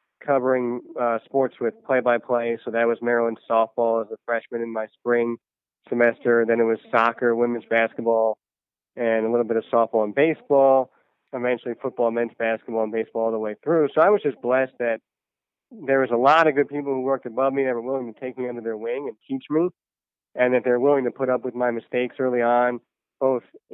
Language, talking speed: English, 210 wpm